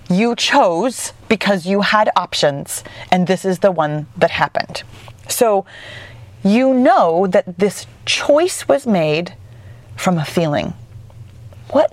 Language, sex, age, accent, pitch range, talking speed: English, female, 30-49, American, 170-255 Hz, 125 wpm